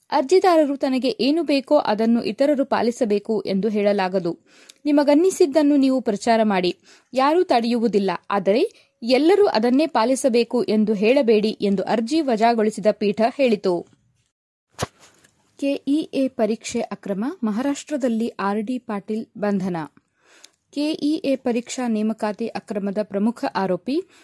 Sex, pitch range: female, 210-280 Hz